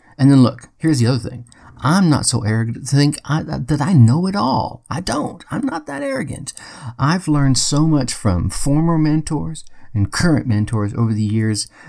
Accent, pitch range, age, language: American, 110-150 Hz, 50-69, English